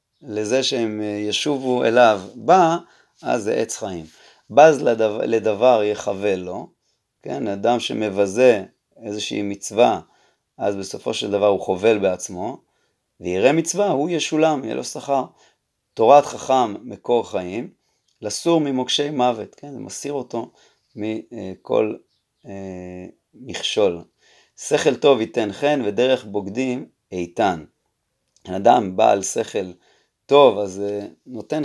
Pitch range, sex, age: 100-135 Hz, male, 30-49